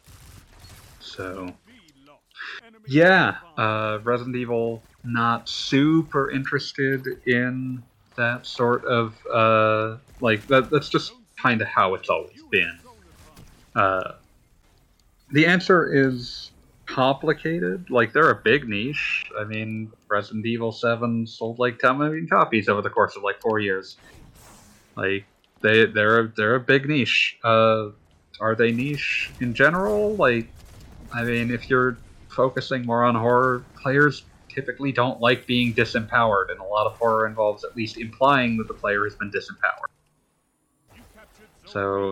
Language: English